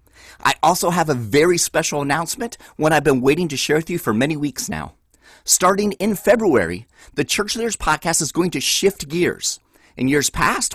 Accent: American